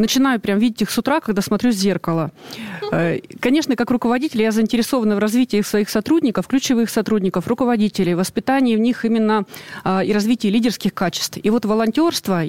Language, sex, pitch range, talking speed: Russian, female, 185-230 Hz, 160 wpm